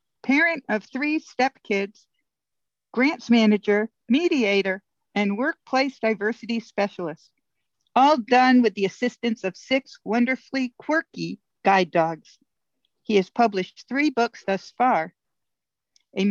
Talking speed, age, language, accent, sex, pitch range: 110 wpm, 60-79, English, American, female, 195-245 Hz